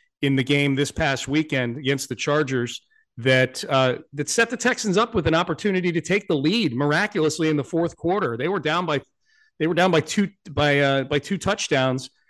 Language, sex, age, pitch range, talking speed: English, male, 40-59, 135-160 Hz, 205 wpm